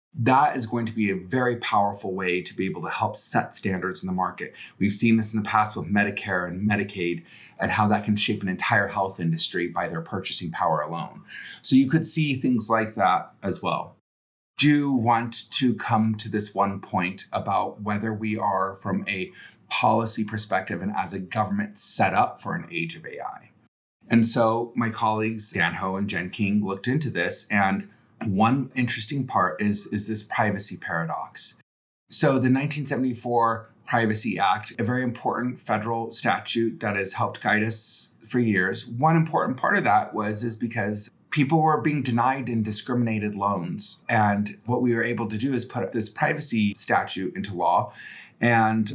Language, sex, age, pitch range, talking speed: English, male, 30-49, 100-120 Hz, 180 wpm